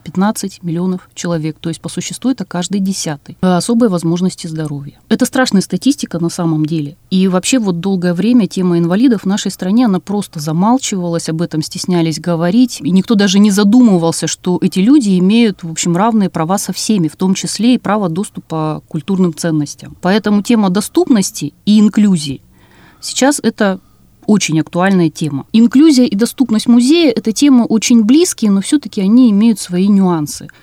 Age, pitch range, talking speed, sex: 30-49, 170-235 Hz, 165 wpm, female